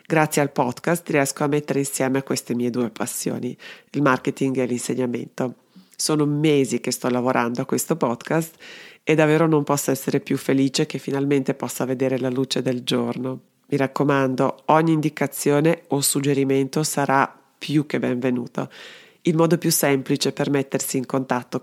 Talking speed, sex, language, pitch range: 155 wpm, female, Italian, 135-170 Hz